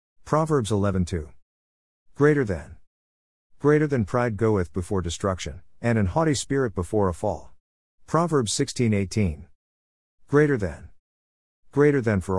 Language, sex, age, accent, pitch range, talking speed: English, male, 50-69, American, 85-120 Hz, 120 wpm